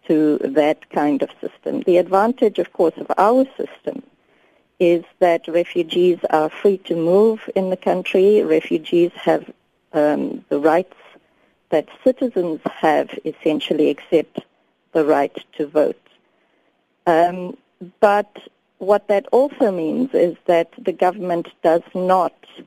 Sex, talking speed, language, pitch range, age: female, 125 wpm, English, 160-205 Hz, 50-69